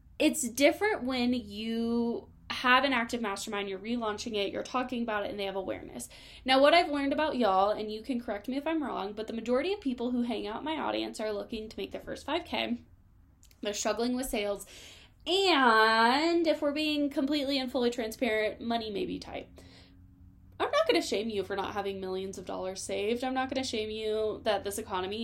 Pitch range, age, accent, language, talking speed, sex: 200-265 Hz, 10-29, American, English, 210 wpm, female